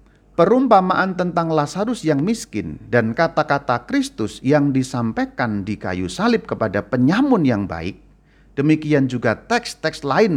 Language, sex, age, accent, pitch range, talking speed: Indonesian, male, 40-59, native, 105-165 Hz, 120 wpm